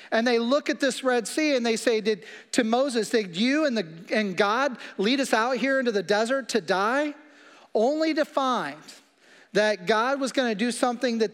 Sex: male